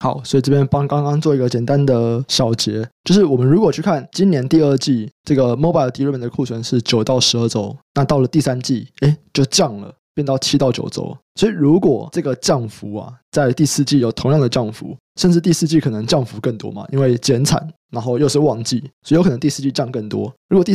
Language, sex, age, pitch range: Chinese, male, 20-39, 120-150 Hz